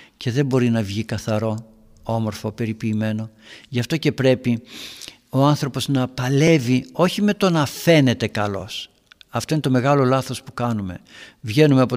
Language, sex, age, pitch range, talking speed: Greek, male, 60-79, 120-170 Hz, 155 wpm